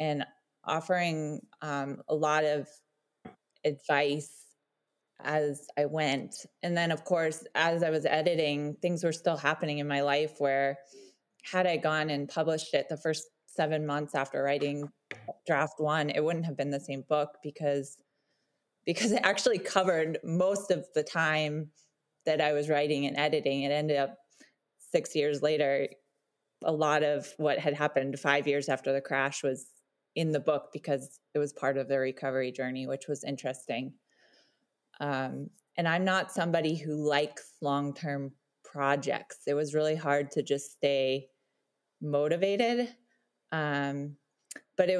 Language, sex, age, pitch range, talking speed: English, female, 20-39, 140-160 Hz, 155 wpm